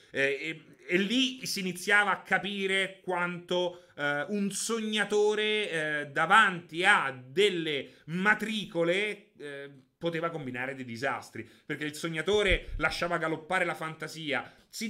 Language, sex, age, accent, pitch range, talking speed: Italian, male, 30-49, native, 135-190 Hz, 120 wpm